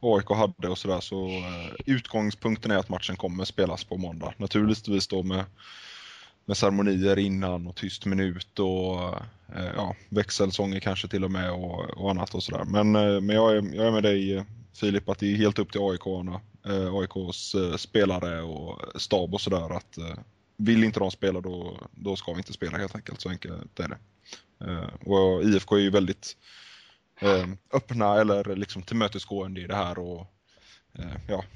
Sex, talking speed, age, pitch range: male, 165 wpm, 20-39, 95-105 Hz